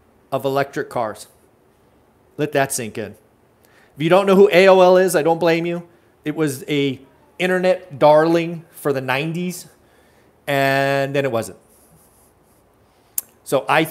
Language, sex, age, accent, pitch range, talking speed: English, male, 40-59, American, 135-175 Hz, 140 wpm